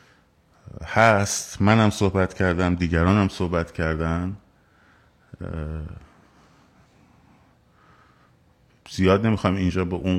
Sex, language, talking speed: male, Persian, 70 wpm